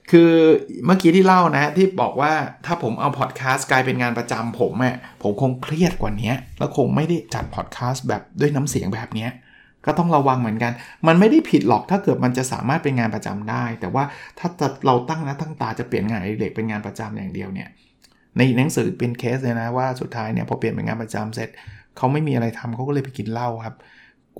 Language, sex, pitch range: Thai, male, 120-160 Hz